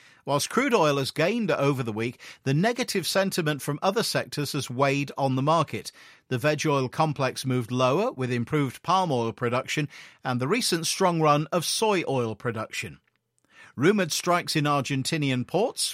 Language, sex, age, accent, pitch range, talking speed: English, male, 50-69, British, 130-170 Hz, 165 wpm